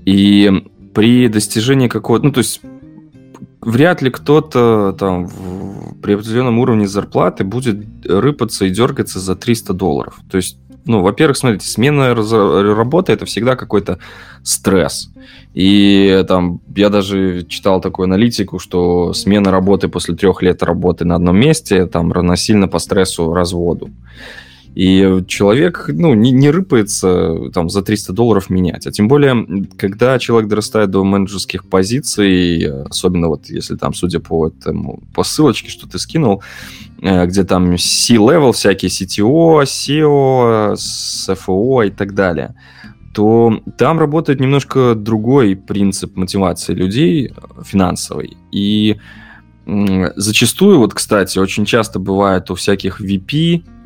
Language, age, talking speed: Ukrainian, 20-39, 130 wpm